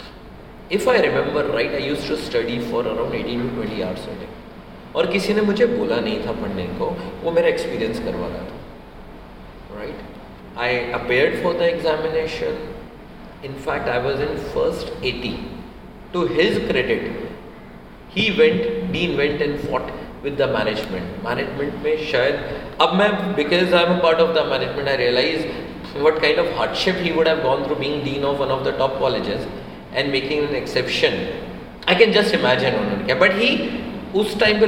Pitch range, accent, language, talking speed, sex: 145-240 Hz, native, Hindi, 170 wpm, male